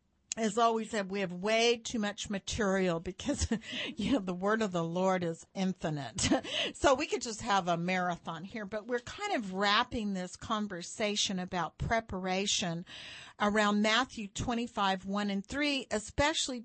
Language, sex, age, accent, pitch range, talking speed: English, female, 50-69, American, 195-250 Hz, 155 wpm